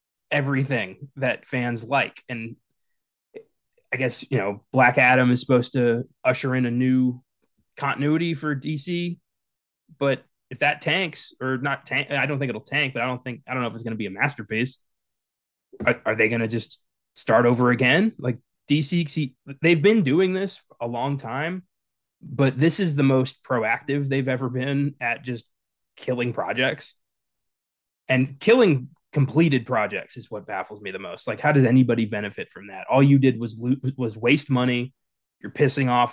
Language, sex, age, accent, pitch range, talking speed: English, male, 20-39, American, 120-145 Hz, 180 wpm